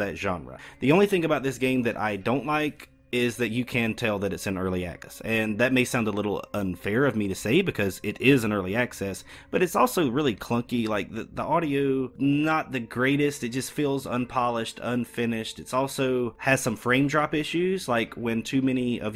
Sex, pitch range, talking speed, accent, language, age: male, 105-135 Hz, 215 wpm, American, English, 30-49